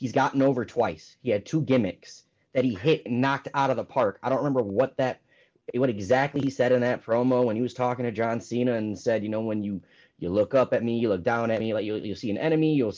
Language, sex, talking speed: English, male, 275 wpm